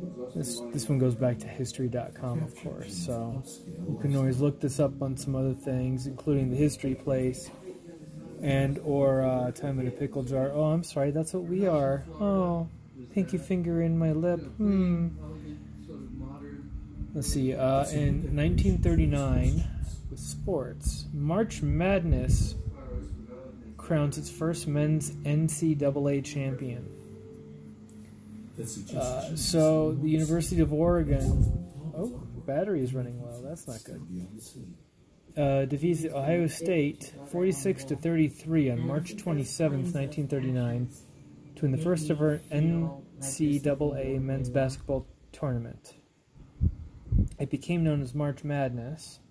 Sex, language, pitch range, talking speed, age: male, English, 125-155 Hz, 130 wpm, 20-39